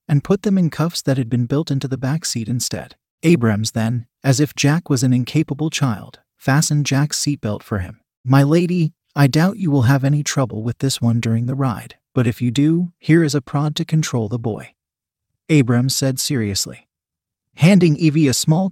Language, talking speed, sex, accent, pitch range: English, 200 wpm, male, American, 120-145 Hz